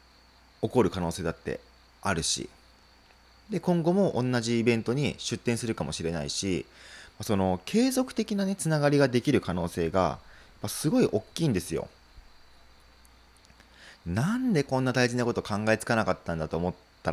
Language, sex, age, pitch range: Japanese, male, 20-39, 85-130 Hz